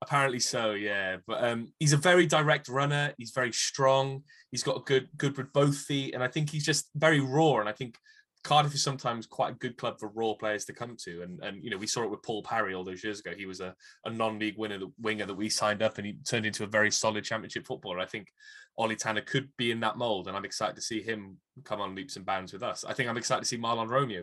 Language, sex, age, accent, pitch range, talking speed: English, male, 10-29, British, 105-130 Hz, 270 wpm